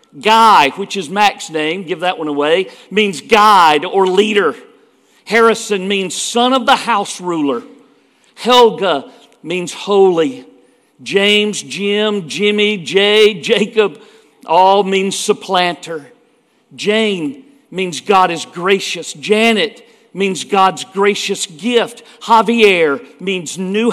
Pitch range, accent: 180-225 Hz, American